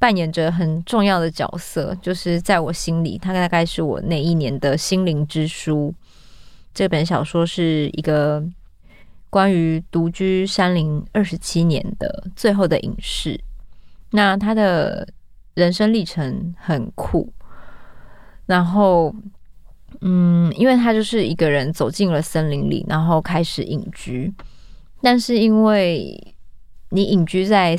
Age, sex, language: 20-39, female, Chinese